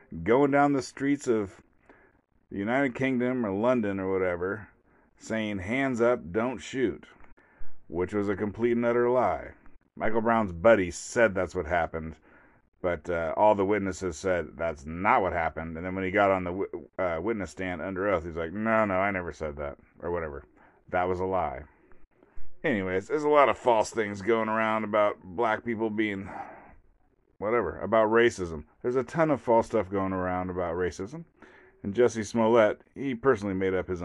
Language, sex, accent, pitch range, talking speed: English, male, American, 90-115 Hz, 180 wpm